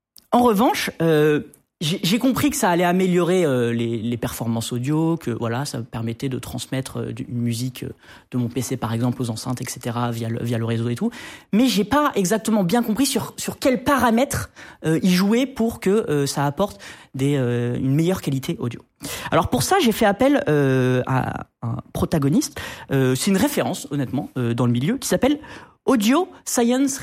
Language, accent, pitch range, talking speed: French, French, 130-210 Hz, 195 wpm